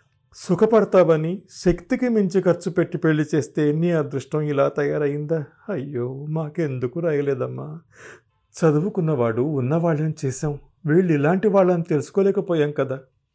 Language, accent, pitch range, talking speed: Telugu, native, 120-170 Hz, 95 wpm